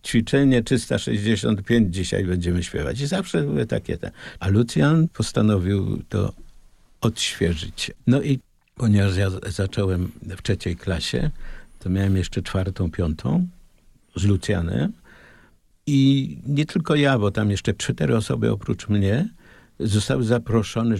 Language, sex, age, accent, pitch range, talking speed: Polish, male, 50-69, native, 90-115 Hz, 120 wpm